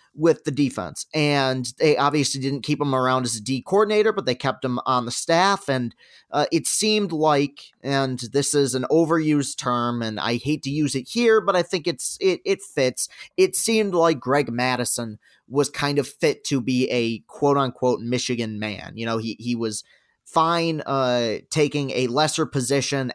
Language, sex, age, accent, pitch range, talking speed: English, male, 30-49, American, 130-170 Hz, 185 wpm